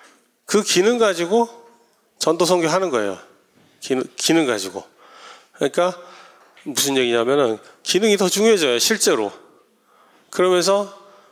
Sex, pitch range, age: male, 130-205 Hz, 40-59